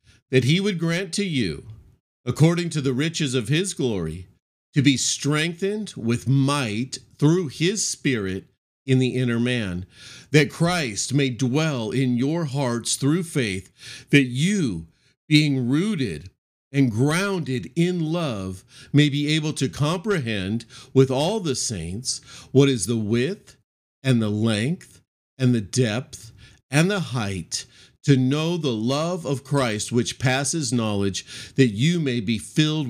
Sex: male